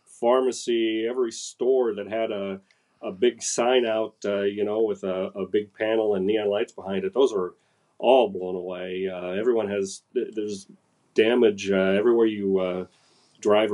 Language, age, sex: English, 40-59, male